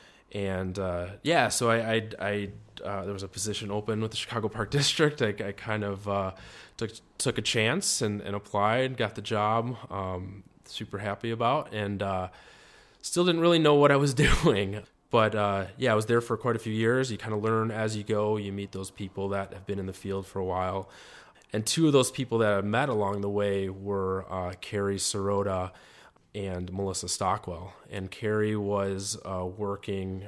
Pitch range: 95-110 Hz